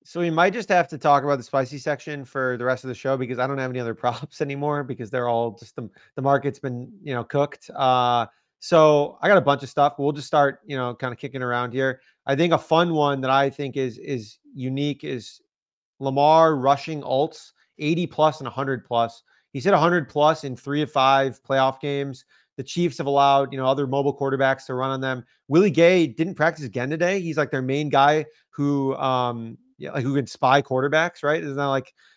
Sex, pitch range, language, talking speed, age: male, 130-155 Hz, English, 230 wpm, 30-49